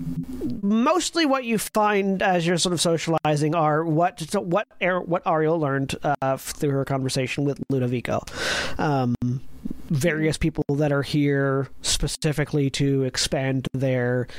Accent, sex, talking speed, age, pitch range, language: American, male, 135 wpm, 40-59, 140-180 Hz, English